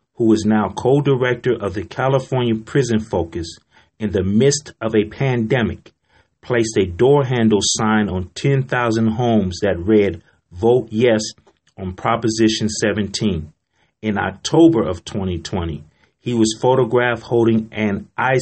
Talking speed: 130 wpm